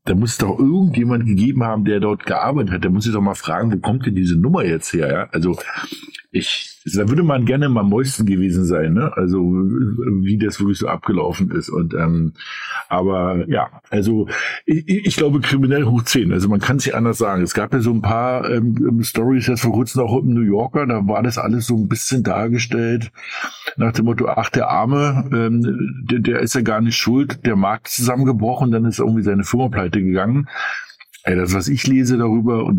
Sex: male